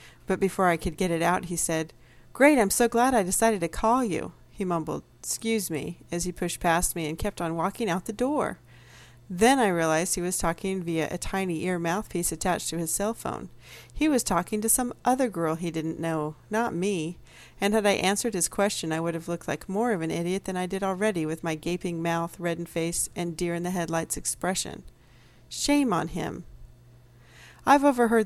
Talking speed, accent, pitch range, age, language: 200 wpm, American, 165-205 Hz, 40-59, English